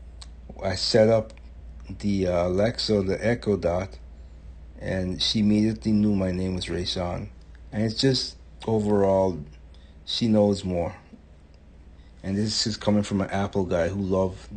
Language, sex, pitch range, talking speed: English, male, 75-100 Hz, 140 wpm